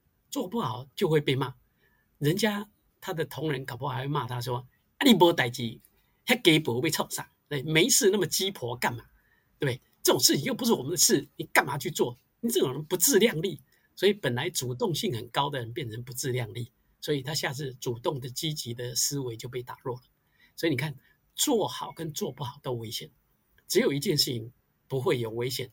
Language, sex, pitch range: Chinese, male, 125-160 Hz